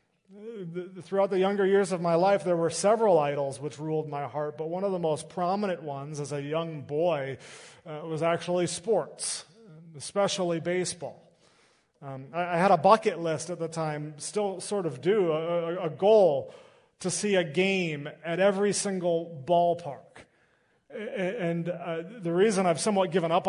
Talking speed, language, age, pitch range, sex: 170 wpm, English, 30-49, 150-190 Hz, male